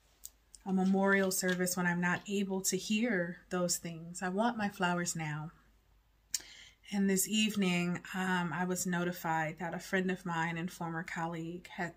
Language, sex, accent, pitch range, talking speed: English, female, American, 175-200 Hz, 160 wpm